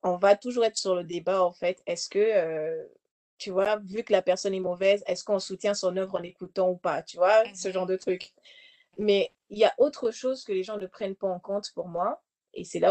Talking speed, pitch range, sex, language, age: 250 wpm, 185-240 Hz, female, French, 30-49